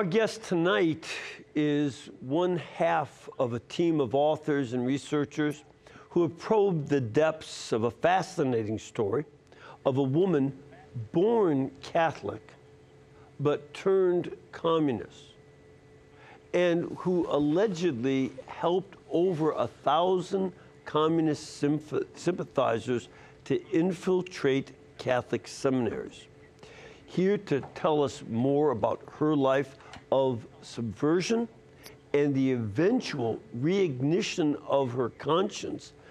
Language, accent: English, American